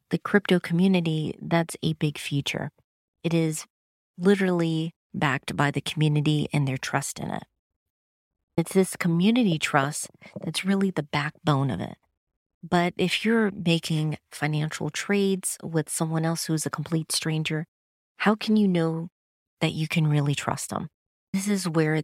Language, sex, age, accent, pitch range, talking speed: English, female, 30-49, American, 150-185 Hz, 150 wpm